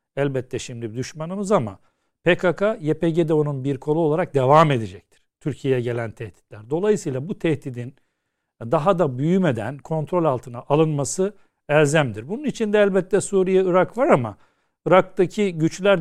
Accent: native